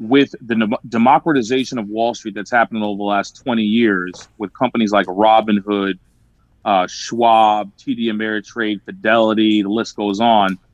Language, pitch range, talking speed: English, 110-150 Hz, 145 wpm